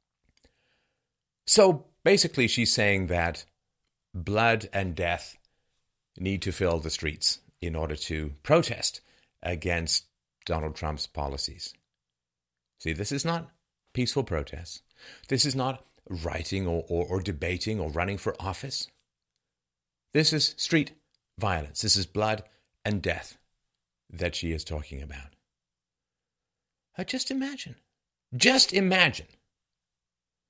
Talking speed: 110 wpm